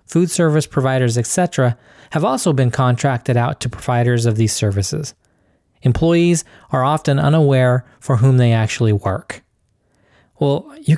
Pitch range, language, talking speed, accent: 115-150 Hz, English, 135 wpm, American